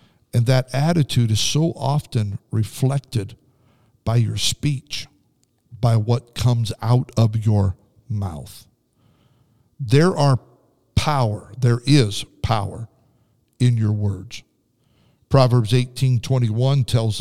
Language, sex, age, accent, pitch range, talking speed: English, male, 50-69, American, 110-130 Hz, 100 wpm